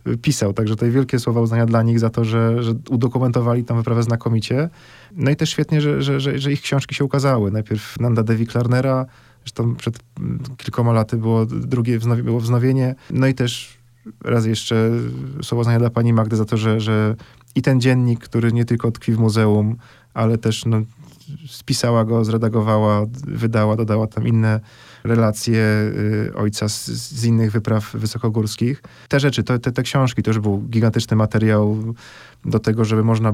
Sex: male